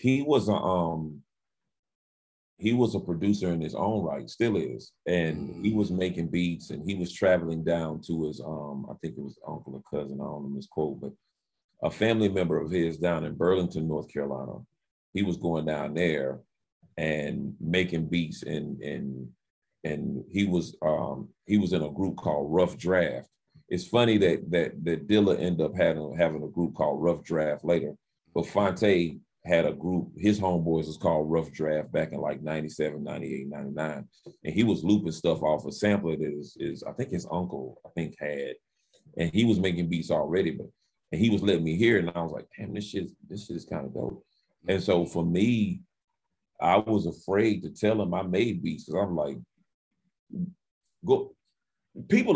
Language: English